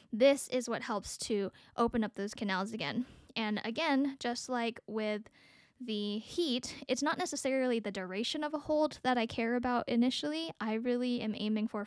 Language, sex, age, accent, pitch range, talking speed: English, female, 10-29, American, 210-255 Hz, 175 wpm